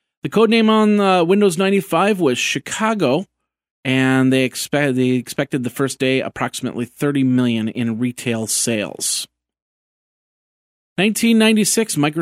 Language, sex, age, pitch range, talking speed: English, male, 40-59, 115-145 Hz, 105 wpm